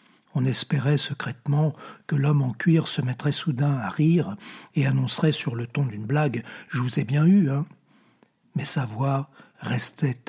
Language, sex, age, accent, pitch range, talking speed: French, male, 60-79, French, 135-165 Hz, 170 wpm